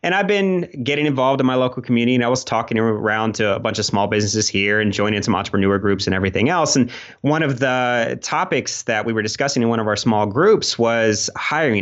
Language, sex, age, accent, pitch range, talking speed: English, male, 30-49, American, 105-150 Hz, 235 wpm